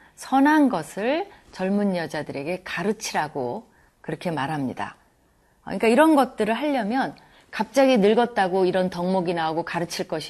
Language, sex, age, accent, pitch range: Korean, female, 30-49, native, 155-230 Hz